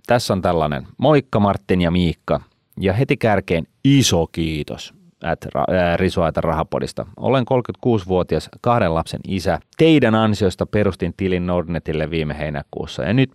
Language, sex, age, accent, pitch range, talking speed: Finnish, male, 30-49, native, 80-110 Hz, 140 wpm